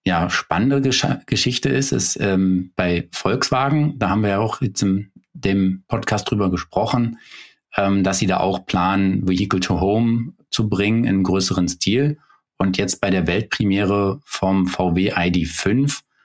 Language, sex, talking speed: German, male, 160 wpm